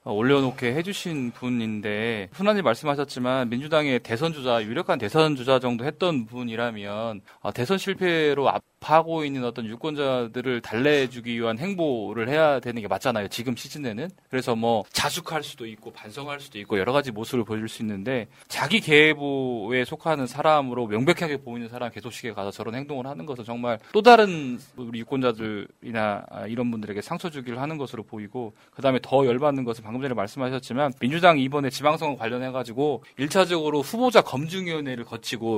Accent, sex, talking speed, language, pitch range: Korean, male, 140 wpm, English, 120-160 Hz